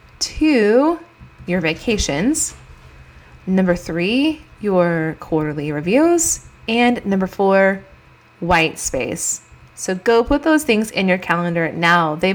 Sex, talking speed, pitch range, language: female, 110 wpm, 170-220 Hz, English